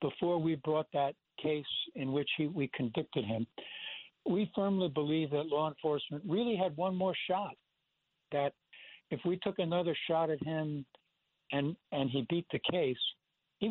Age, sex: 60-79, male